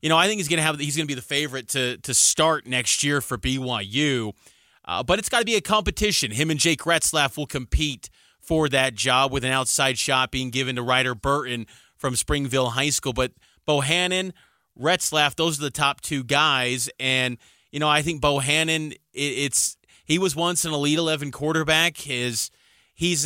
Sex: male